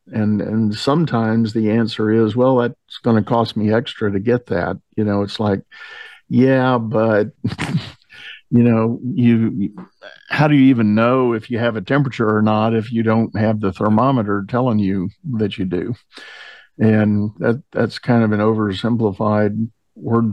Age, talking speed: 50-69, 165 wpm